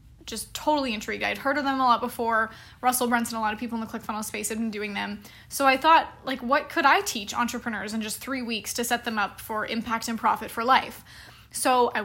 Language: English